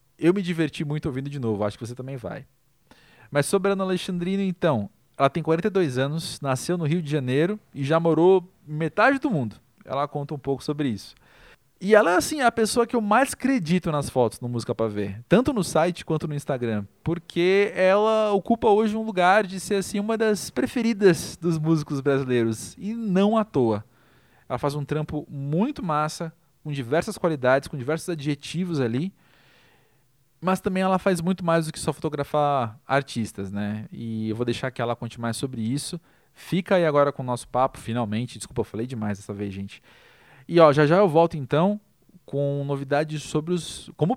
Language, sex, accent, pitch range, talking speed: Portuguese, male, Brazilian, 125-180 Hz, 195 wpm